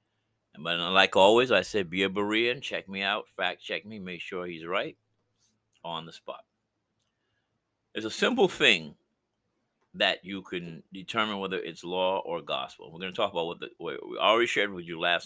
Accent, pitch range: American, 95-115 Hz